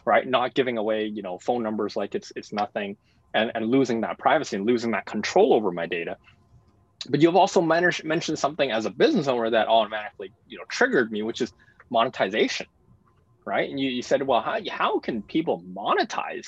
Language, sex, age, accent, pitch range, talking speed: English, male, 20-39, American, 110-135 Hz, 195 wpm